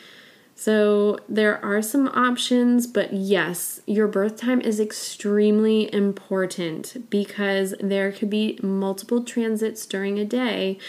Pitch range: 185-220 Hz